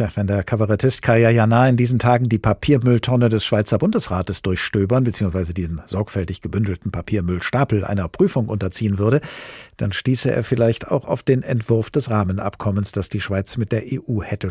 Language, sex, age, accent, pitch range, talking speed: German, male, 50-69, German, 100-125 Hz, 160 wpm